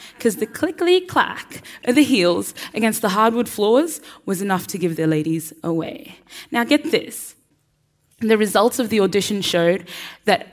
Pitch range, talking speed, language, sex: 170-240 Hz, 160 wpm, English, female